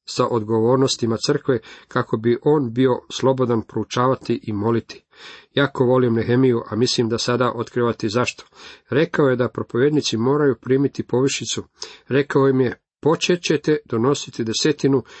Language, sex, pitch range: Croatian, male, 110-130 Hz